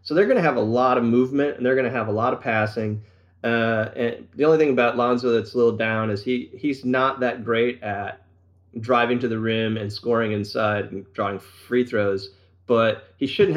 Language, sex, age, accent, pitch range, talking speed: English, male, 30-49, American, 105-135 Hz, 215 wpm